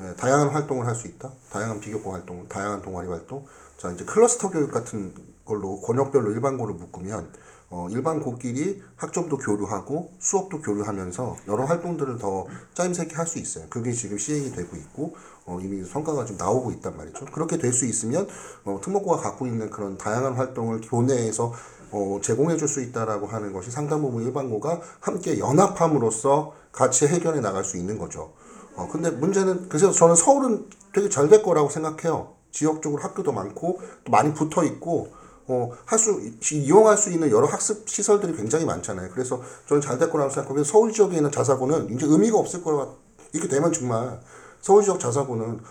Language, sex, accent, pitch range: Korean, male, native, 110-165 Hz